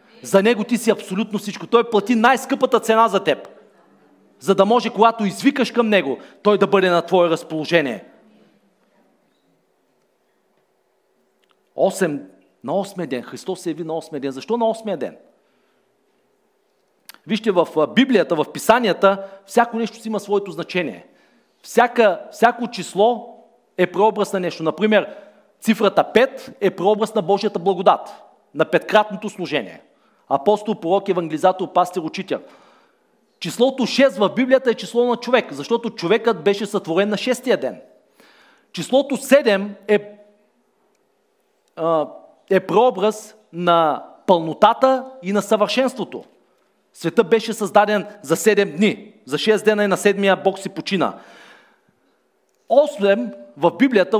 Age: 40-59